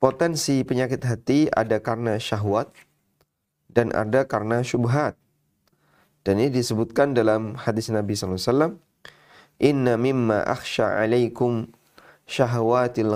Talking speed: 100 wpm